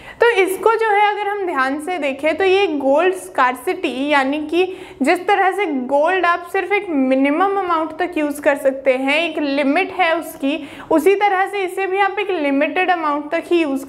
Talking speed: 195 wpm